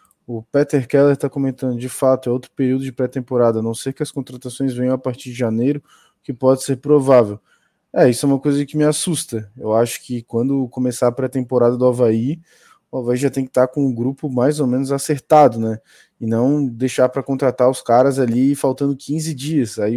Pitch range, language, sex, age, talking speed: 120-145 Hz, Portuguese, male, 20-39, 215 wpm